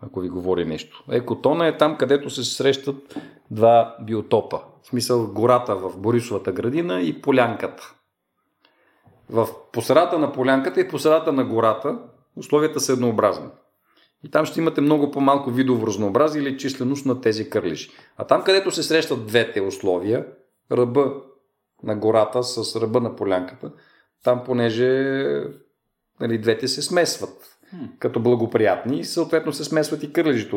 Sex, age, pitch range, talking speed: male, 40-59, 110-145 Hz, 140 wpm